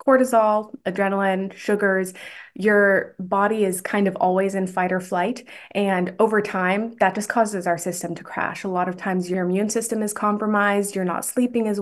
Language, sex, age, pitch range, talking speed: English, female, 20-39, 185-210 Hz, 185 wpm